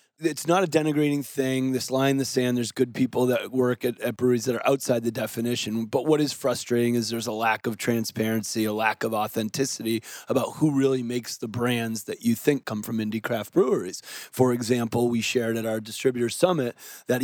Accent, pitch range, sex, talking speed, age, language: American, 120-140 Hz, male, 210 wpm, 30-49, English